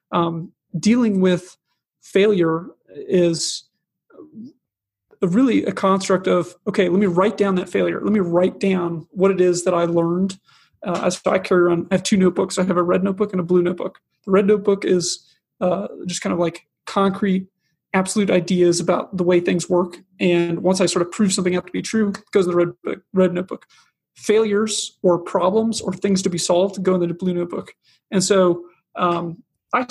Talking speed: 195 wpm